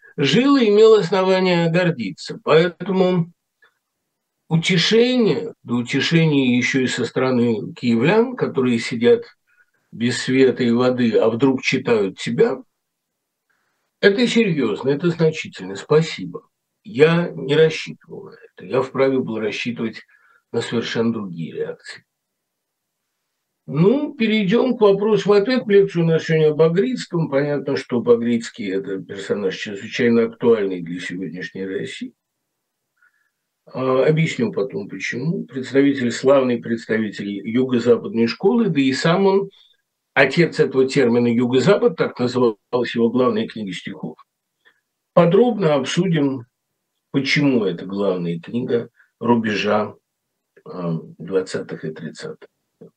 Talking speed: 110 wpm